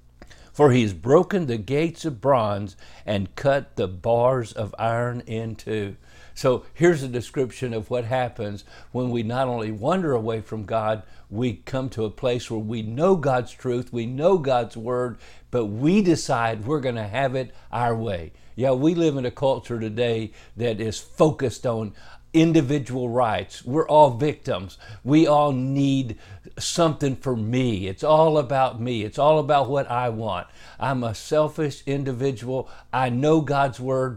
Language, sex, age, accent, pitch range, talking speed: English, male, 60-79, American, 115-140 Hz, 165 wpm